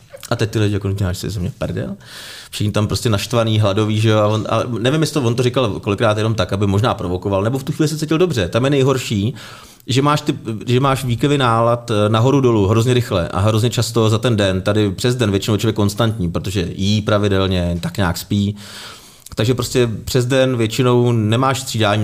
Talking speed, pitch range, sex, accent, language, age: 200 wpm, 100-130 Hz, male, native, Czech, 30-49